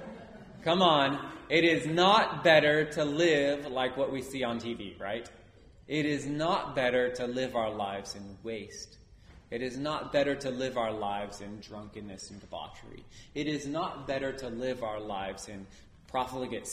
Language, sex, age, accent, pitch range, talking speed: English, male, 30-49, American, 105-150 Hz, 170 wpm